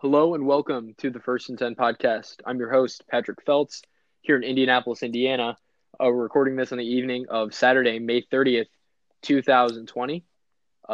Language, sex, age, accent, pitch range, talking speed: English, male, 20-39, American, 110-130 Hz, 165 wpm